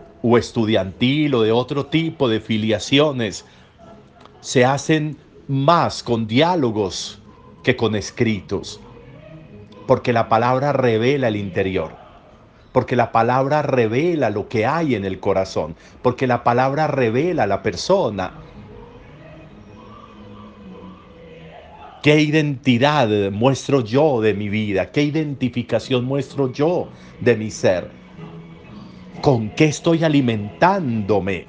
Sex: male